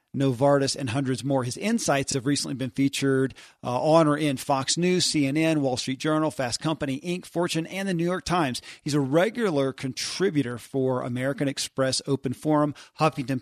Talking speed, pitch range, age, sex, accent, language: 175 wpm, 130-155 Hz, 40-59, male, American, English